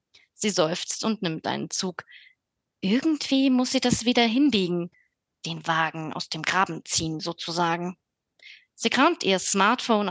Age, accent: 20-39, German